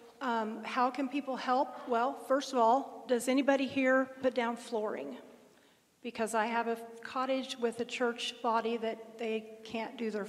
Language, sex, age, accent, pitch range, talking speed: English, female, 40-59, American, 220-255 Hz, 170 wpm